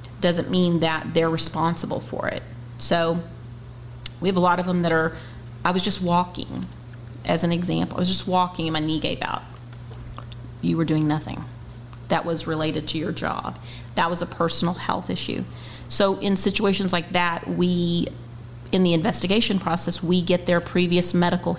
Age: 40-59